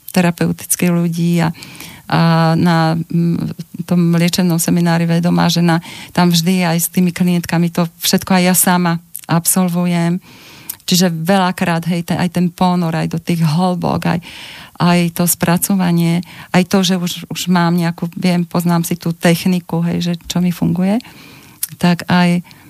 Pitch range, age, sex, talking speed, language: 170-185 Hz, 40-59, female, 150 wpm, Slovak